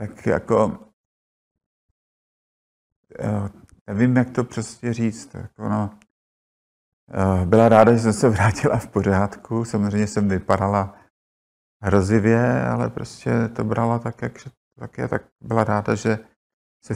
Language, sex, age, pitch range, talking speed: Czech, male, 50-69, 95-110 Hz, 110 wpm